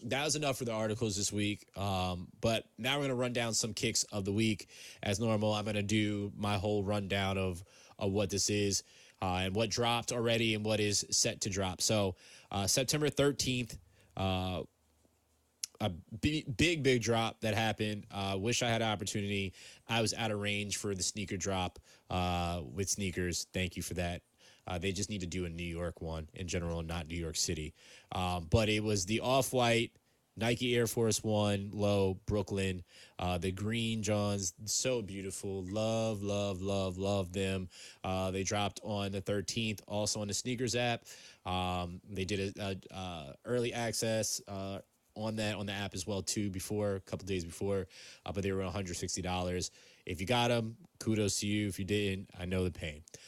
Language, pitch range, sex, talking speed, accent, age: English, 95-110 Hz, male, 190 wpm, American, 20-39